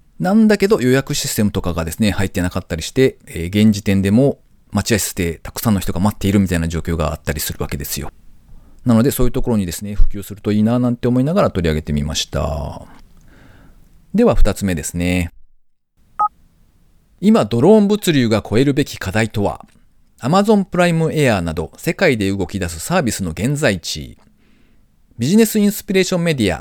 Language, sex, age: Japanese, male, 40-59